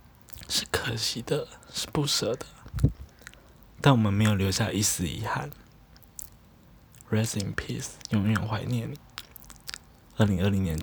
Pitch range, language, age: 95-115 Hz, Chinese, 20-39